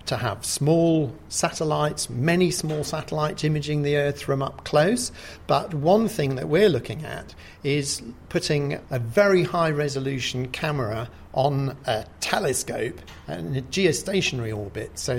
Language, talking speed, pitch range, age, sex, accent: English, 135 wpm, 130-170 Hz, 50-69, male, British